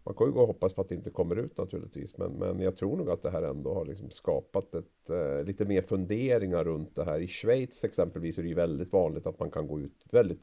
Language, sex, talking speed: Swedish, male, 265 wpm